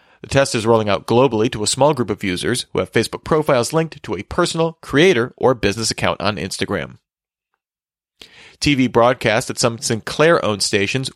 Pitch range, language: 110-135 Hz, English